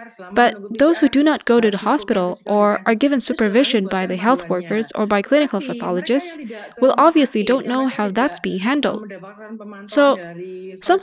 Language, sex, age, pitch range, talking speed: English, female, 20-39, 210-275 Hz, 170 wpm